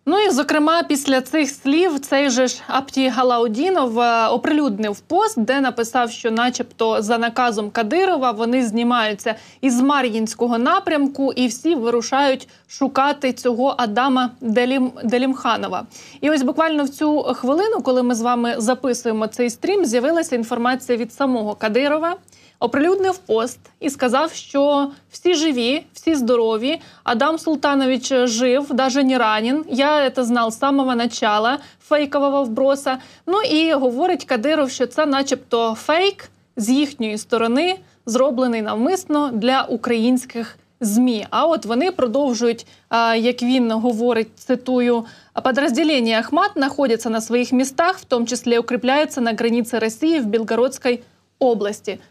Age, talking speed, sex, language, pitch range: 20-39, 130 wpm, female, Ukrainian, 235-285 Hz